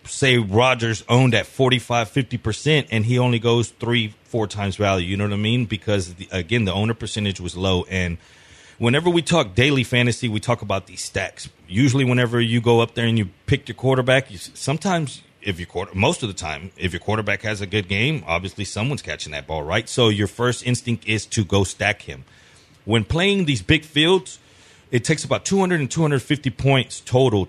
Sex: male